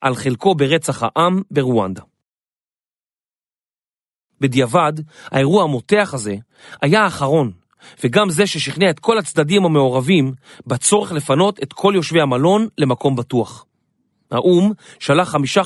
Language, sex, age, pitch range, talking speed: Hebrew, male, 40-59, 130-180 Hz, 110 wpm